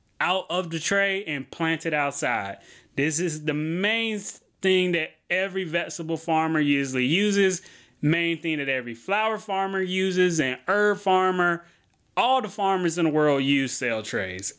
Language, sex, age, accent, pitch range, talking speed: English, male, 20-39, American, 150-195 Hz, 155 wpm